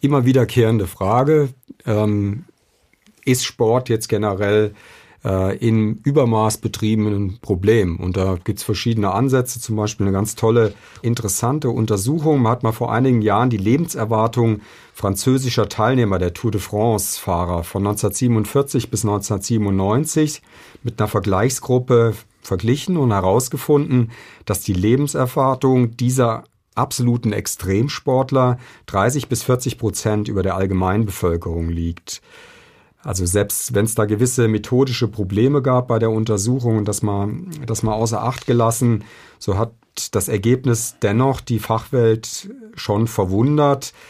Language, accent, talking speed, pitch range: German, German, 125 wpm, 105-125 Hz